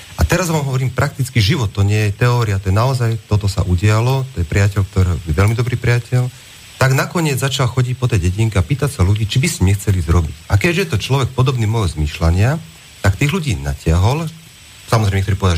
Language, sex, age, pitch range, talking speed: Slovak, male, 40-59, 95-135 Hz, 210 wpm